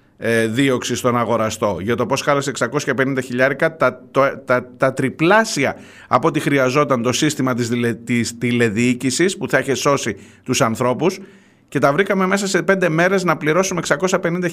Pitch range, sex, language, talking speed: 105-140 Hz, male, Greek, 155 wpm